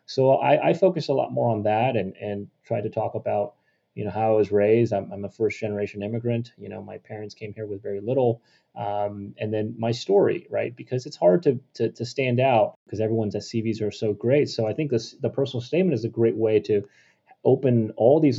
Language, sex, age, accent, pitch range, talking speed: English, male, 30-49, American, 105-125 Hz, 230 wpm